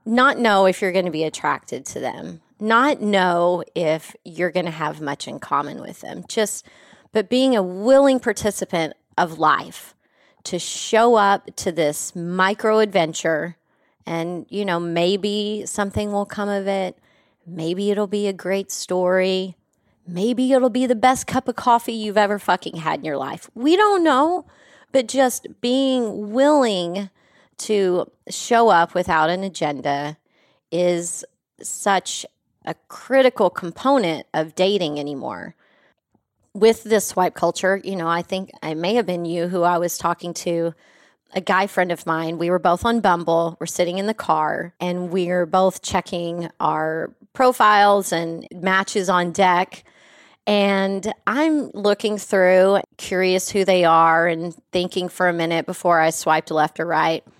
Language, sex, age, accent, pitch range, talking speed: English, female, 30-49, American, 170-215 Hz, 155 wpm